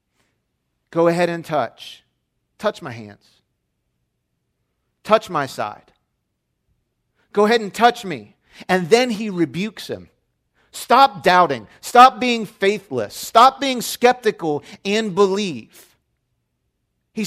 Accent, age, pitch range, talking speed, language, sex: American, 40-59, 175-240 Hz, 110 wpm, English, male